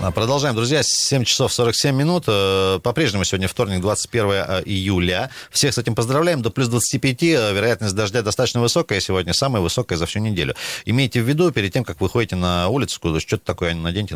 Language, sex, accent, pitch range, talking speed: Russian, male, native, 90-120 Hz, 180 wpm